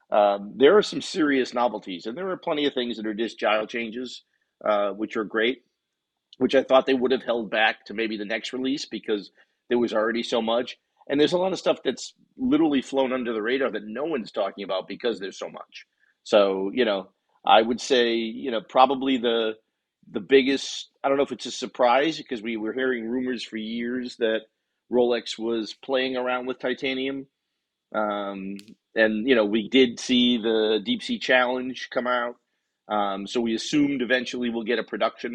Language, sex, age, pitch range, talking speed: English, male, 40-59, 110-130 Hz, 195 wpm